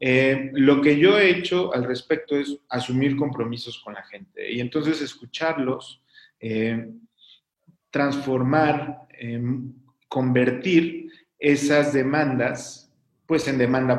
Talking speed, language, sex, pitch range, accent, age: 110 wpm, Spanish, male, 120-150 Hz, Mexican, 40-59